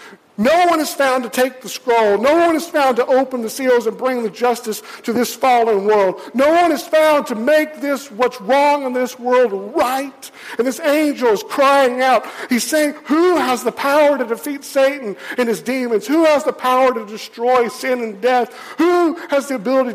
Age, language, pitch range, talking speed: 50-69, English, 230-275 Hz, 205 wpm